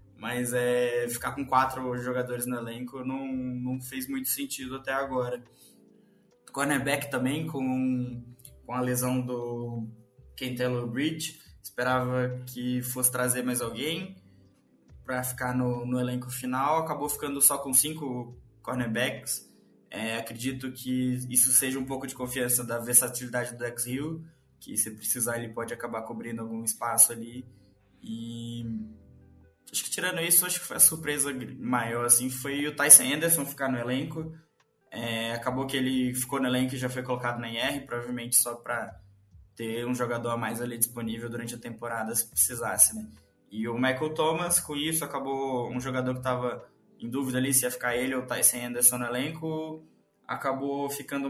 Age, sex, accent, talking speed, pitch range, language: 20-39, male, Brazilian, 165 wpm, 120-140 Hz, Portuguese